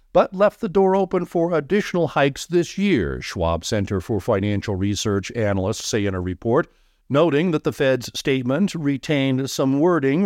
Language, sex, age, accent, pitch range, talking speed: English, male, 50-69, American, 105-155 Hz, 165 wpm